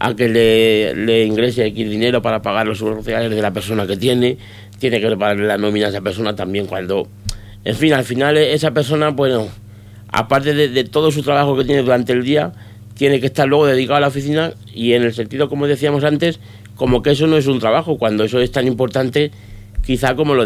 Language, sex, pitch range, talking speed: Spanish, male, 105-130 Hz, 215 wpm